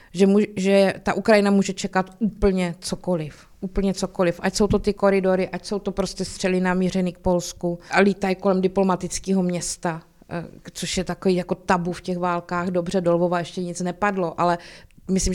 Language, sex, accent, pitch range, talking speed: Czech, female, native, 175-195 Hz, 170 wpm